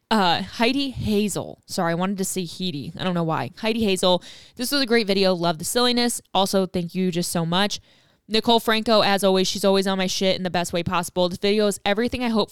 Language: English